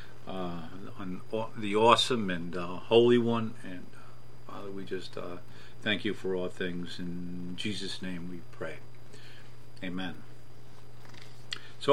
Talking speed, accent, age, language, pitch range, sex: 135 wpm, American, 50-69, English, 110-130 Hz, male